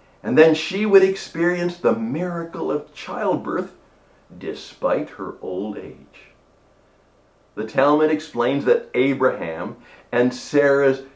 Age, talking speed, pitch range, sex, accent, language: 50-69, 110 wpm, 125-175 Hz, male, American, English